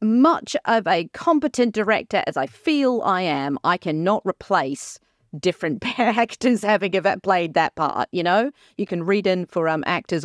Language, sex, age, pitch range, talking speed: English, female, 40-59, 165-230 Hz, 165 wpm